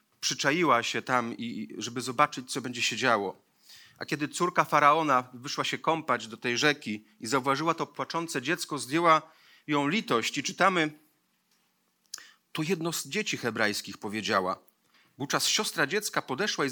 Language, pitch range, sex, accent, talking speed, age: Polish, 115-150 Hz, male, native, 145 wpm, 40-59